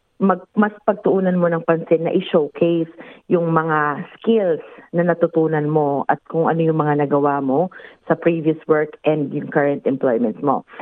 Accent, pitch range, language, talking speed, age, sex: native, 145-170 Hz, Filipino, 160 wpm, 30-49, female